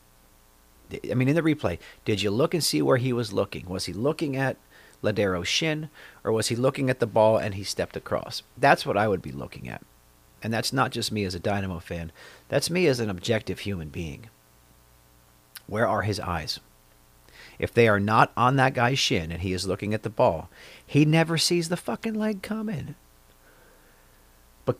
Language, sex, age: English, male, 40-59